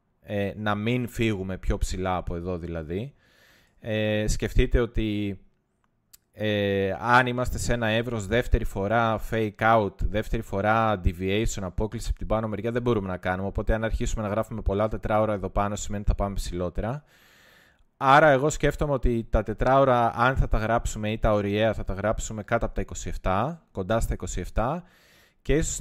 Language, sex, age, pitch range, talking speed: Greek, male, 20-39, 100-125 Hz, 170 wpm